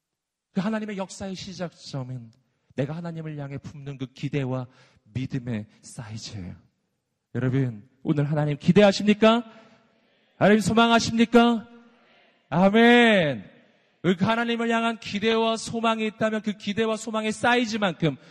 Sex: male